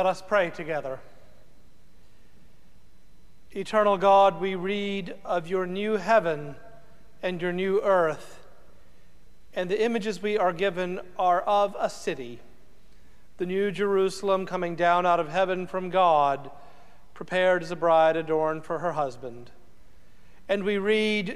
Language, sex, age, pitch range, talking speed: English, male, 40-59, 165-195 Hz, 130 wpm